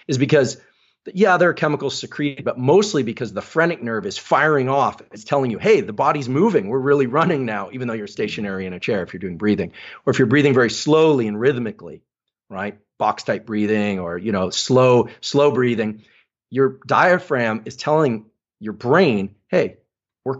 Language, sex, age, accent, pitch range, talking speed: English, male, 40-59, American, 110-150 Hz, 190 wpm